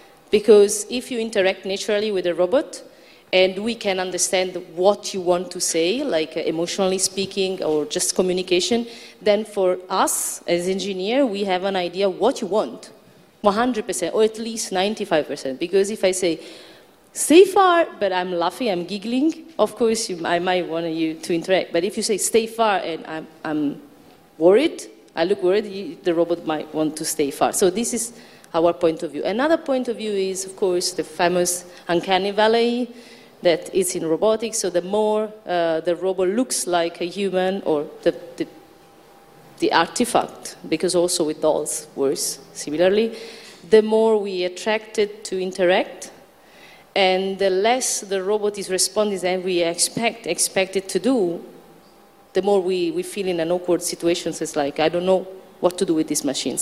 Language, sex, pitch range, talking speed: German, female, 175-210 Hz, 175 wpm